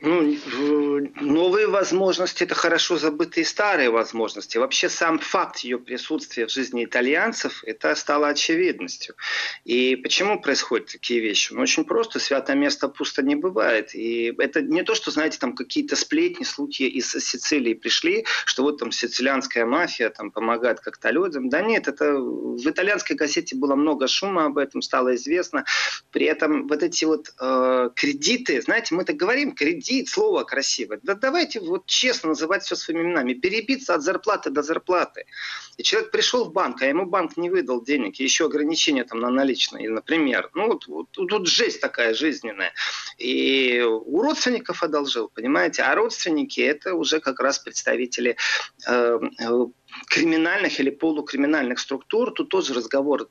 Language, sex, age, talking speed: Russian, male, 30-49, 160 wpm